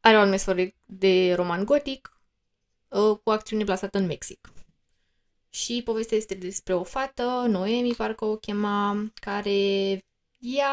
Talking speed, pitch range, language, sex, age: 125 wpm, 180-225 Hz, Romanian, female, 20-39